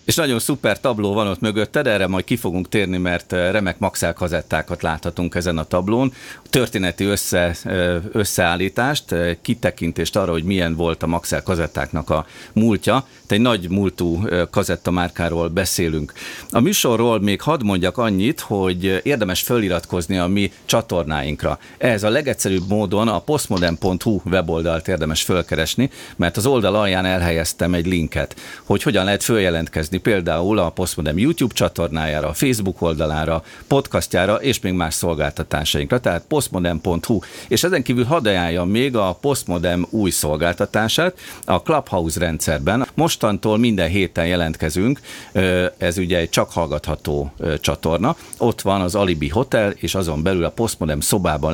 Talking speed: 140 wpm